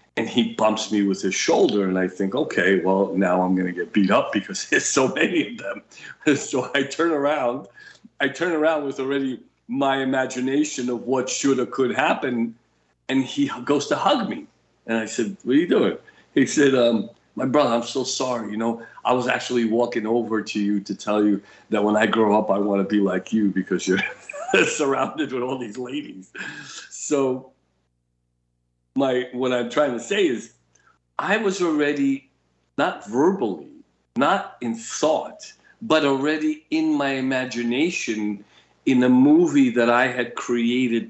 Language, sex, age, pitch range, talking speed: English, male, 50-69, 105-140 Hz, 175 wpm